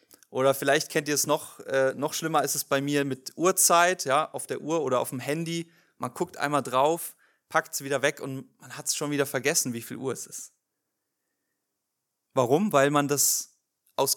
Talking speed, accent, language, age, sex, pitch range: 205 wpm, German, German, 30-49, male, 130-150 Hz